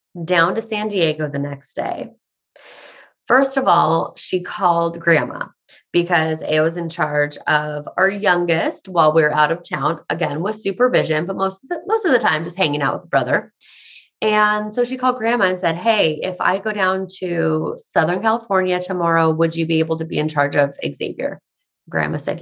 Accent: American